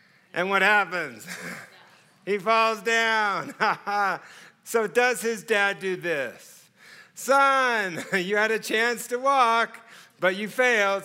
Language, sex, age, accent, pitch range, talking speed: English, male, 50-69, American, 180-225 Hz, 120 wpm